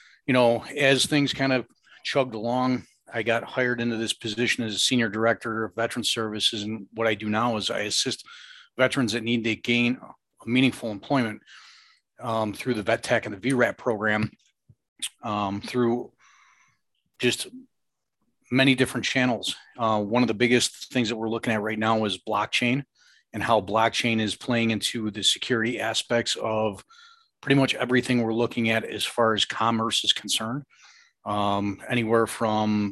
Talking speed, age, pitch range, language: 165 wpm, 40-59, 110-125 Hz, English